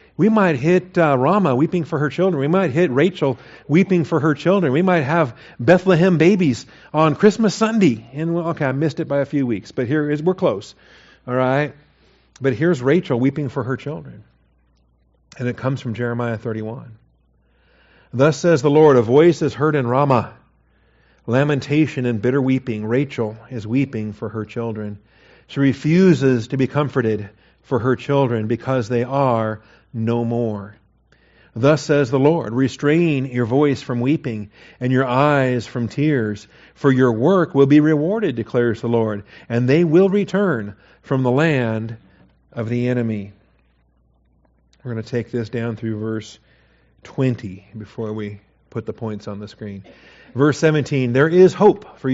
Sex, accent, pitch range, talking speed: male, American, 115-155 Hz, 165 wpm